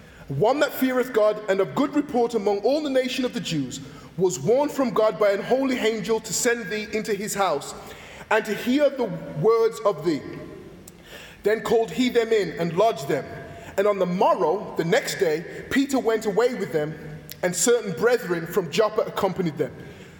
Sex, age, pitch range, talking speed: male, 20-39, 200-255 Hz, 185 wpm